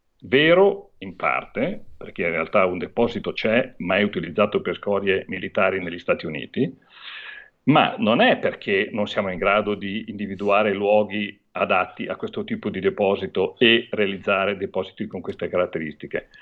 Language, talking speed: Italian, 150 wpm